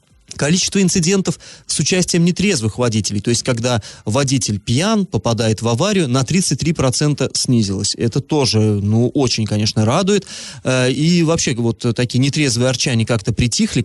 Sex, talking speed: male, 135 wpm